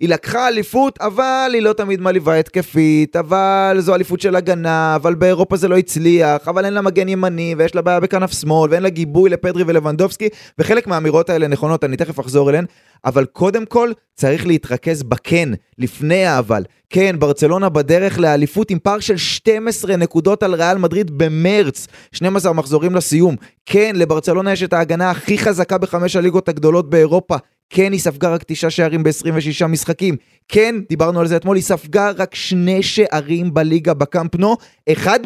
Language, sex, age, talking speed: Hebrew, male, 20-39, 165 wpm